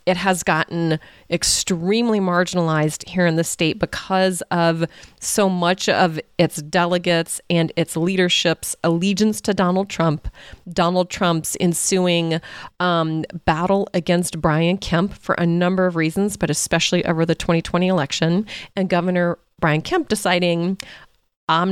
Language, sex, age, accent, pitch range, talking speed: English, female, 30-49, American, 165-190 Hz, 135 wpm